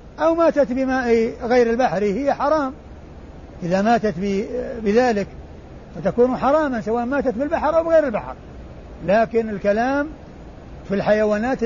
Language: Arabic